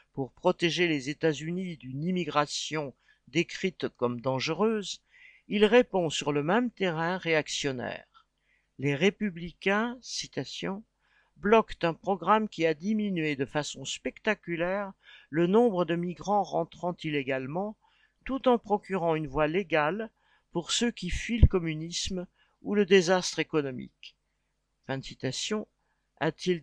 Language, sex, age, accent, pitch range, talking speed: French, male, 50-69, French, 150-190 Hz, 120 wpm